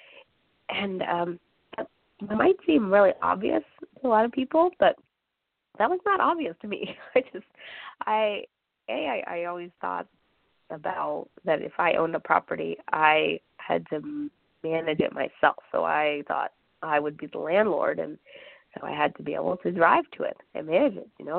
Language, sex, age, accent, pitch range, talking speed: English, female, 20-39, American, 150-205 Hz, 180 wpm